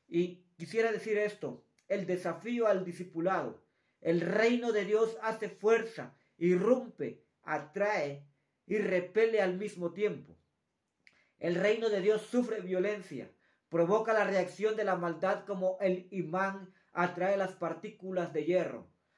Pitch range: 175-210 Hz